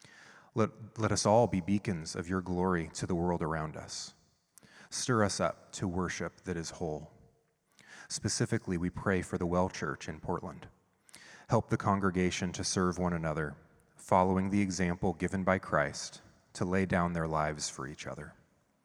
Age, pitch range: 30-49, 90-105 Hz